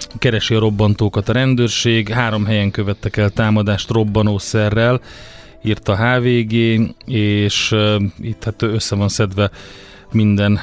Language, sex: Hungarian, male